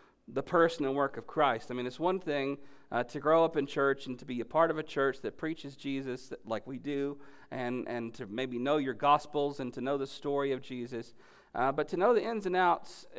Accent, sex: American, male